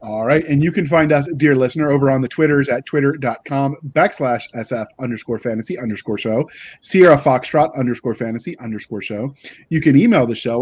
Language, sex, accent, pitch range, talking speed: English, male, American, 125-155 Hz, 180 wpm